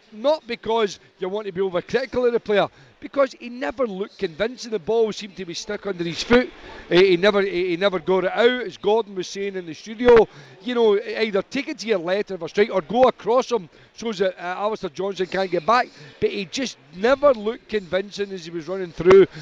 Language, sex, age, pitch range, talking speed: English, male, 40-59, 175-215 Hz, 230 wpm